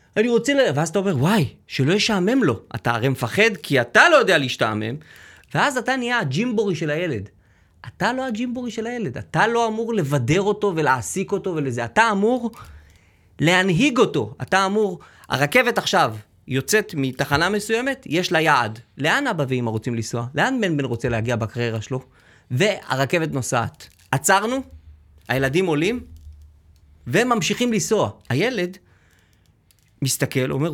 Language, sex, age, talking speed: Hebrew, male, 30-49, 145 wpm